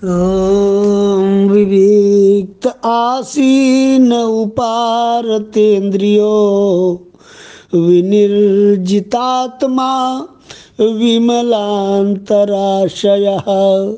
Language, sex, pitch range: Hindi, male, 175-230 Hz